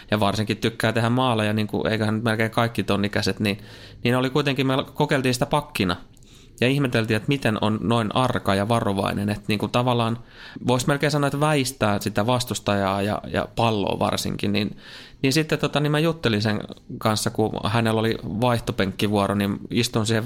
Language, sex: Finnish, male